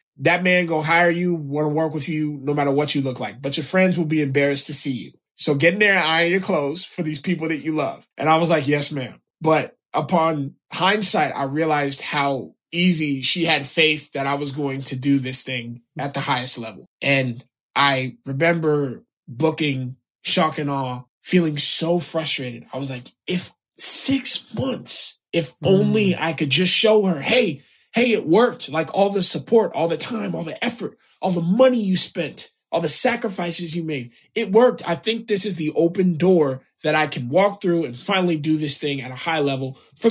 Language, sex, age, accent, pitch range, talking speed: English, male, 20-39, American, 135-170 Hz, 205 wpm